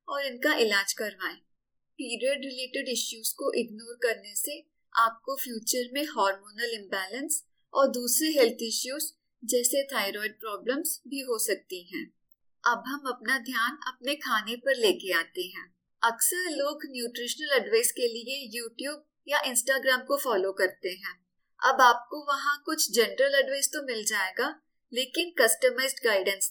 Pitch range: 225-290 Hz